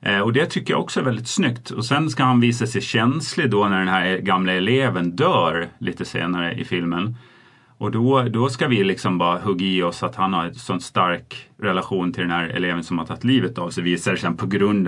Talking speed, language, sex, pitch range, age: 235 wpm, English, male, 95-125 Hz, 30-49